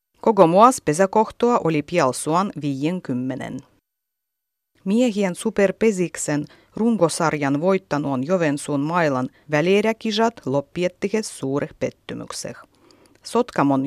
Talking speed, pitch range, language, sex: 80 wpm, 145-220 Hz, Finnish, female